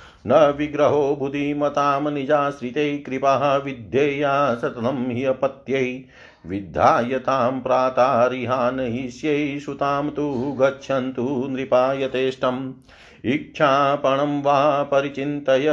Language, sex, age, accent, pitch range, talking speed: Hindi, male, 50-69, native, 130-140 Hz, 55 wpm